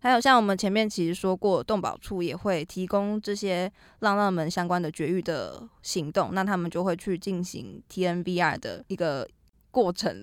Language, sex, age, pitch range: Chinese, female, 20-39, 180-225 Hz